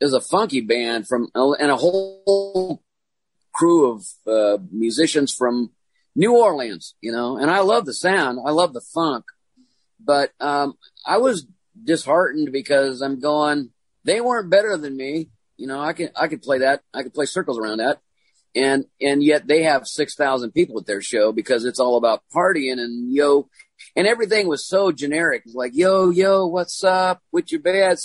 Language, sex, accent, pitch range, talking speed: English, male, American, 135-190 Hz, 185 wpm